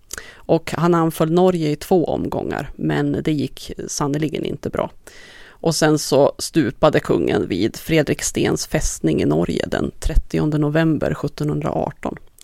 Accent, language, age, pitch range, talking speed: native, Swedish, 30-49, 155-190 Hz, 130 wpm